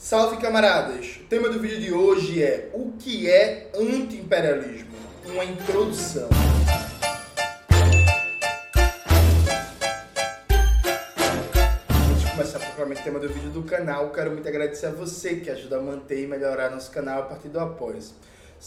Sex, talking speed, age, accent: male, 135 wpm, 20-39, Brazilian